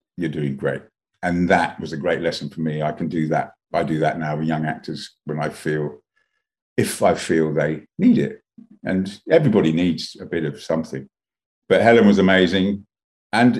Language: English